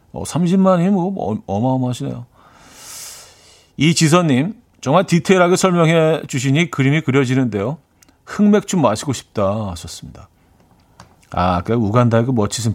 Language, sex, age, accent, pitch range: Korean, male, 40-59, native, 105-150 Hz